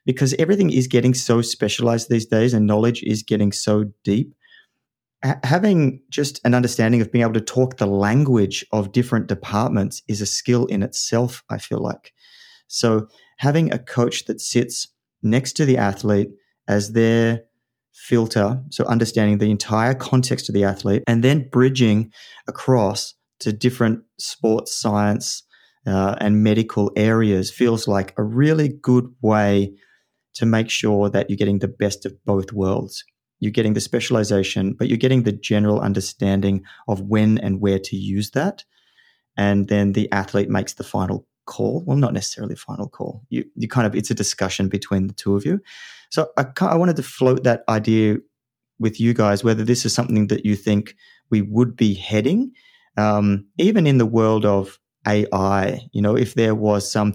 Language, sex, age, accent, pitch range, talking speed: English, male, 30-49, Australian, 105-125 Hz, 170 wpm